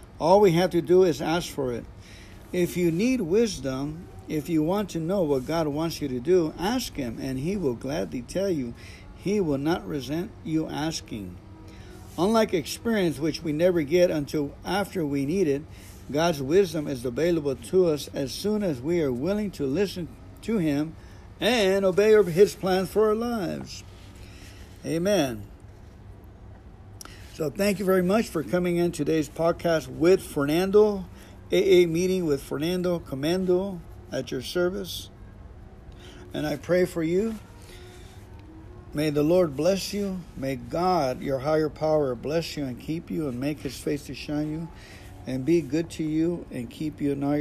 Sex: male